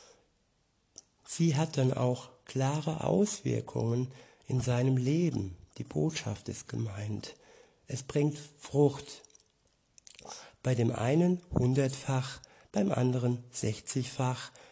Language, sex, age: German, male, 60-79